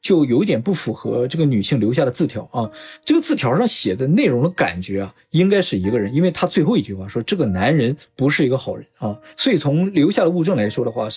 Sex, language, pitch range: male, Chinese, 125-185 Hz